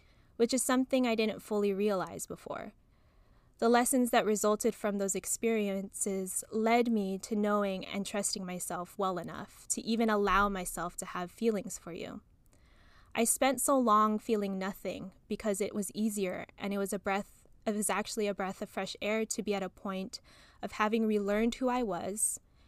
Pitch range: 195-225 Hz